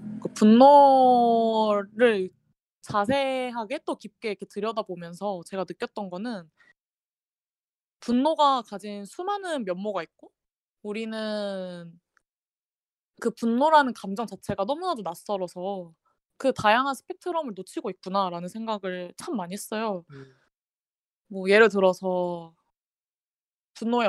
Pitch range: 185-255 Hz